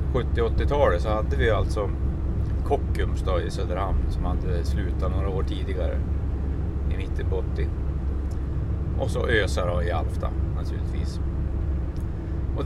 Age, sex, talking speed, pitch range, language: 30-49, male, 115 wpm, 75-100 Hz, Swedish